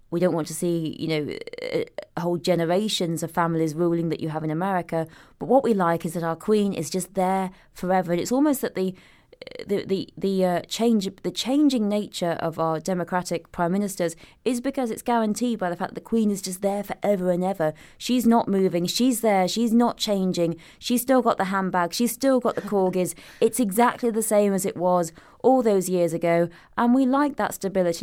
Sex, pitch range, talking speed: female, 175-230 Hz, 210 wpm